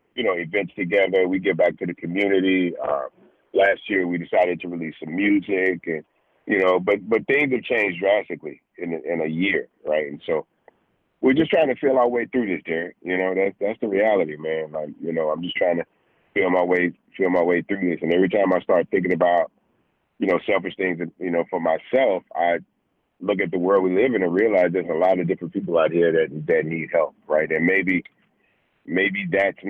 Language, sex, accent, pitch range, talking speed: English, male, American, 85-100 Hz, 220 wpm